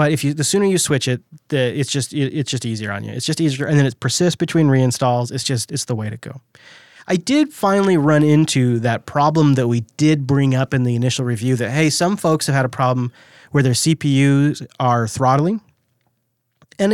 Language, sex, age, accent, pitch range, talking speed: English, male, 30-49, American, 120-150 Hz, 225 wpm